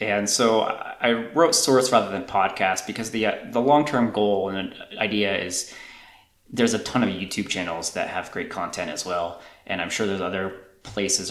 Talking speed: 185 wpm